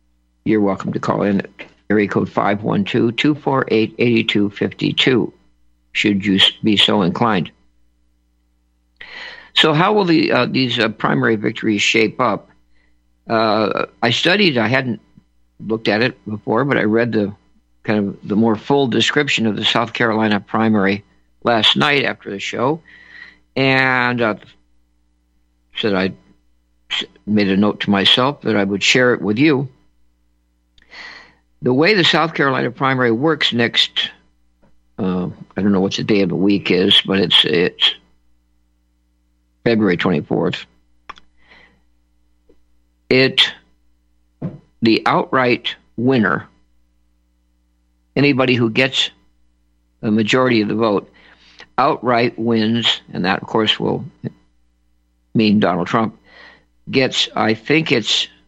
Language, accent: English, American